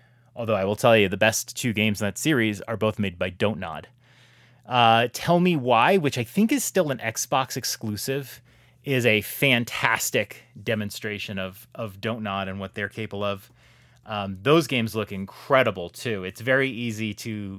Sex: male